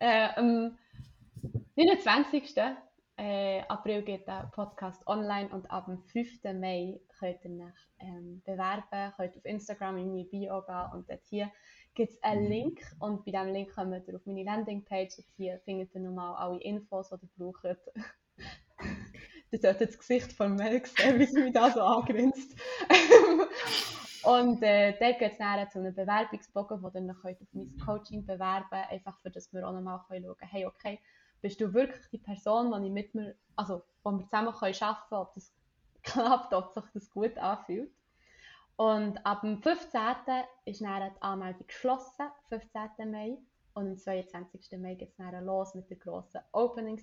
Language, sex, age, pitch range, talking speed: German, female, 20-39, 190-230 Hz, 175 wpm